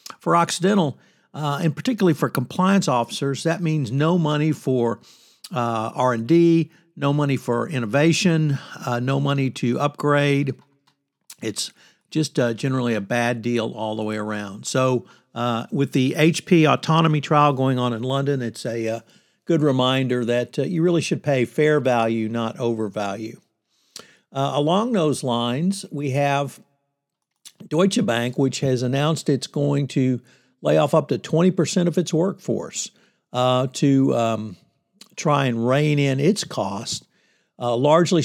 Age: 60-79